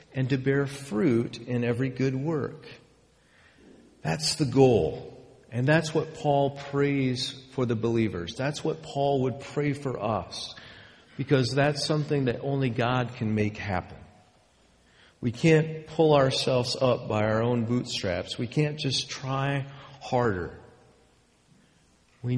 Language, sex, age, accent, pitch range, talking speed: English, male, 50-69, American, 110-145 Hz, 135 wpm